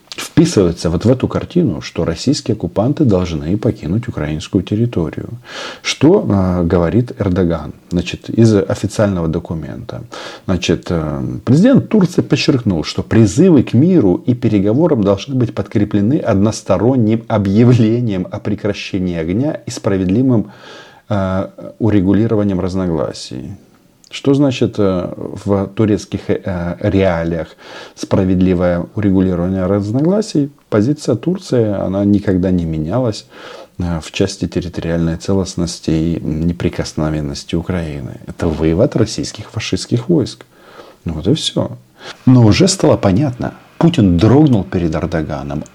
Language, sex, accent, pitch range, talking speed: Russian, male, native, 90-115 Hz, 105 wpm